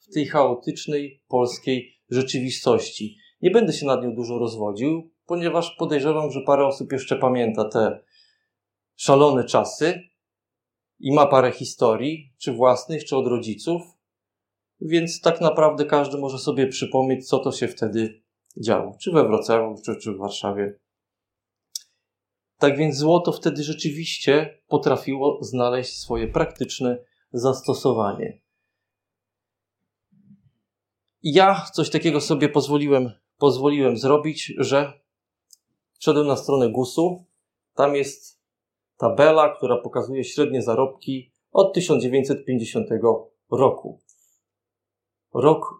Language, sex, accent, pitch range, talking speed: Polish, male, native, 120-155 Hz, 110 wpm